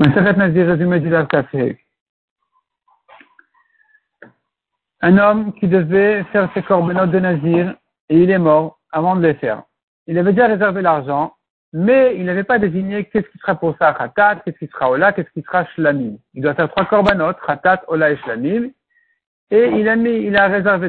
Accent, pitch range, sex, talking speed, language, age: French, 165-220 Hz, male, 160 wpm, French, 60-79